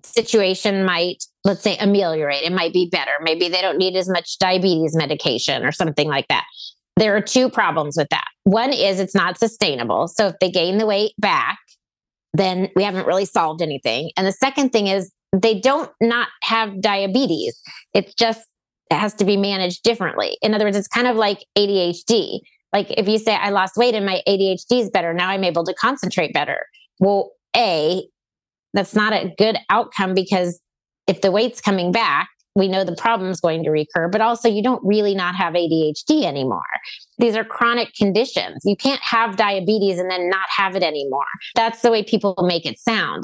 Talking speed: 190 wpm